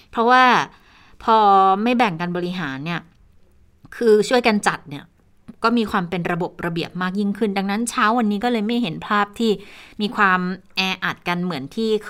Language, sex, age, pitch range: Thai, female, 20-39, 180-230 Hz